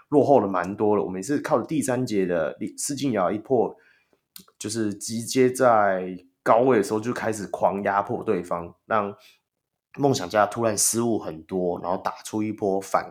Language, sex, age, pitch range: Chinese, male, 20-39, 95-135 Hz